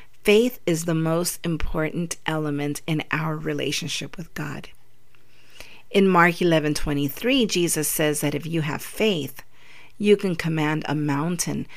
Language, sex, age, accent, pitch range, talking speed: English, female, 50-69, American, 155-200 Hz, 150 wpm